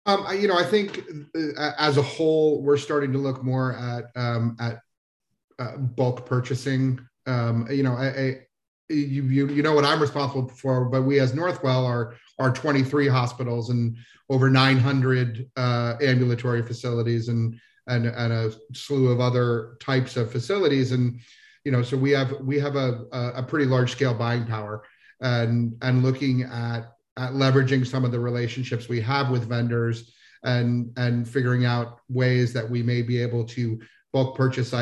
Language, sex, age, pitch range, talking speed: English, male, 40-59, 120-135 Hz, 165 wpm